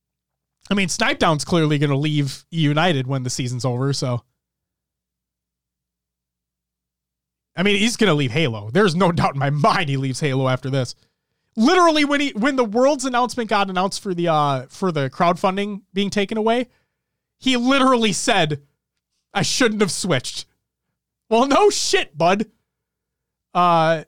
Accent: American